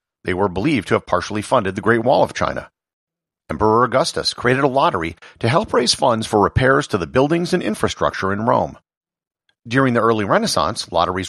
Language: English